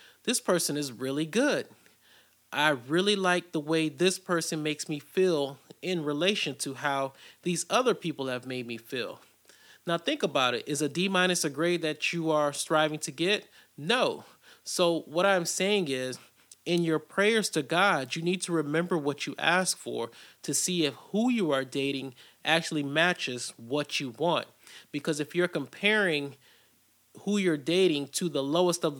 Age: 30-49